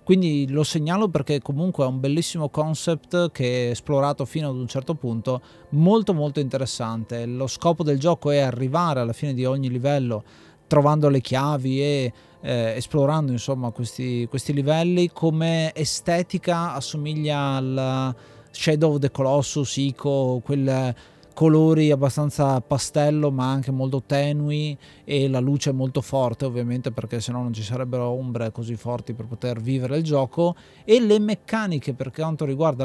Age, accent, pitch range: 30-49, native, 125-155 Hz